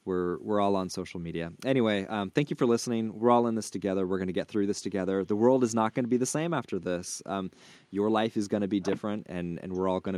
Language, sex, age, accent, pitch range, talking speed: English, male, 20-39, American, 95-115 Hz, 285 wpm